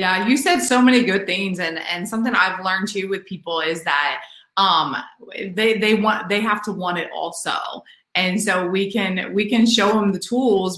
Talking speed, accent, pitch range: 205 wpm, American, 175-225 Hz